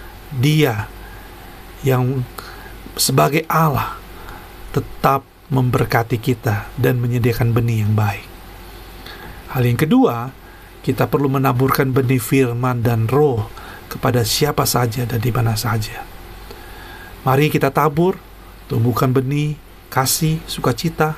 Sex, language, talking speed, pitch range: male, Indonesian, 100 wpm, 110-145 Hz